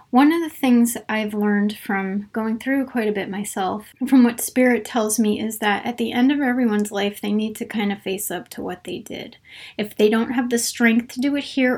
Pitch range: 210-235 Hz